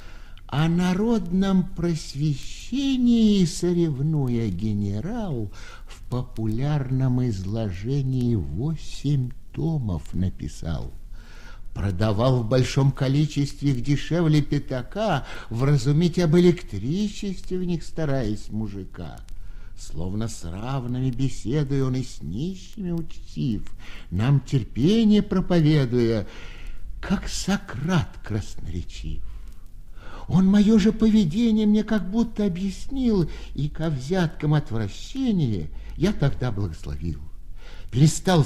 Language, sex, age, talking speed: Russian, male, 60-79, 85 wpm